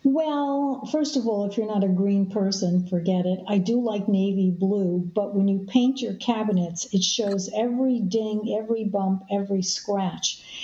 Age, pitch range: 60-79, 195-235 Hz